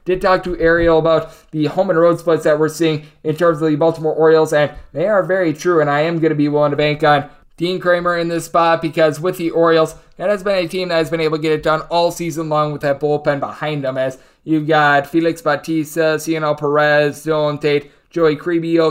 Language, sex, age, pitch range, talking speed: English, male, 20-39, 145-165 Hz, 240 wpm